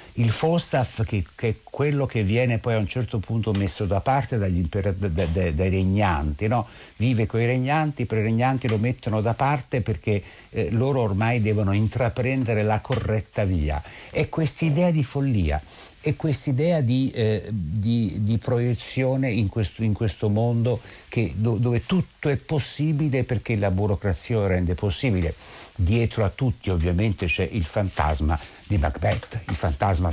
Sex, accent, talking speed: male, native, 165 wpm